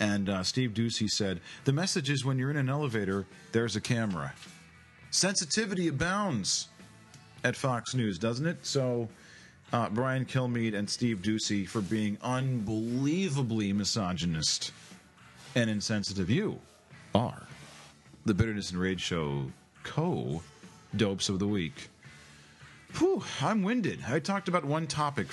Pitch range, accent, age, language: 100-130 Hz, American, 40-59, English